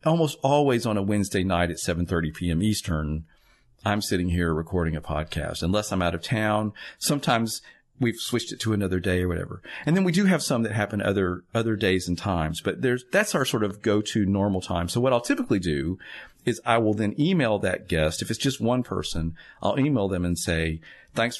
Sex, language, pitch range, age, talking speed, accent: male, English, 90-120 Hz, 40-59, 210 wpm, American